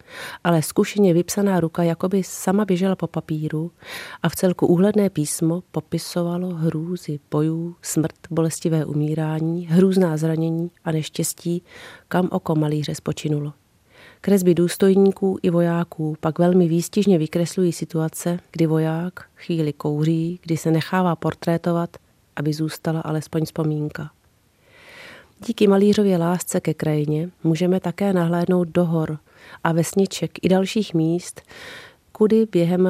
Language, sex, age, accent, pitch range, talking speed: Czech, female, 40-59, native, 160-180 Hz, 120 wpm